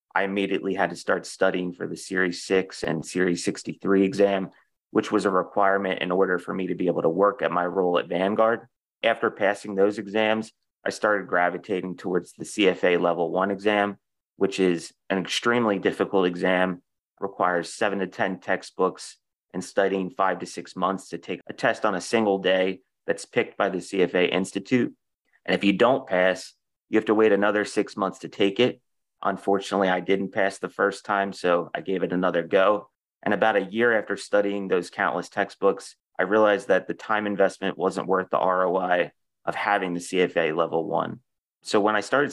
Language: English